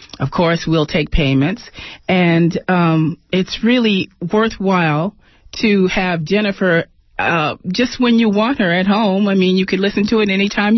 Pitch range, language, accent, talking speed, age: 145-195 Hz, English, American, 165 wpm, 40-59